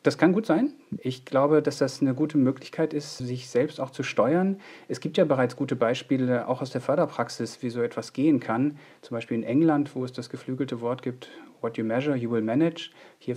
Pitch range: 120-145 Hz